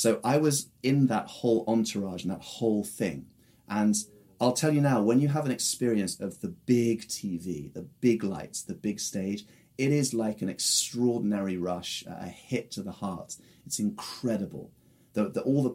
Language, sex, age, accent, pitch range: Japanese, male, 30-49, British, 105-145 Hz